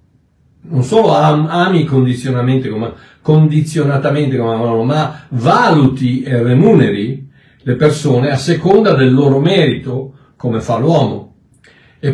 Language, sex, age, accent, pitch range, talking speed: Italian, male, 60-79, native, 125-165 Hz, 105 wpm